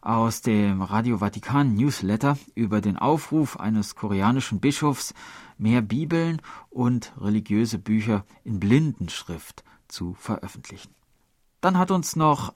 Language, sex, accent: German, male, German